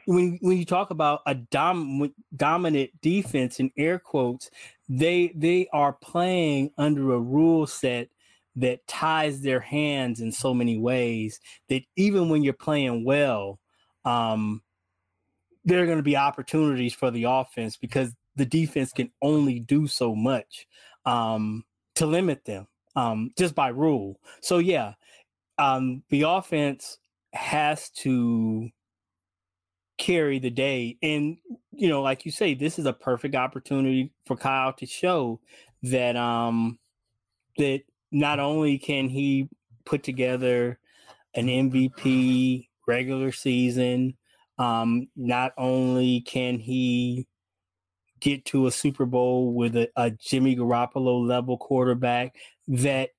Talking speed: 130 wpm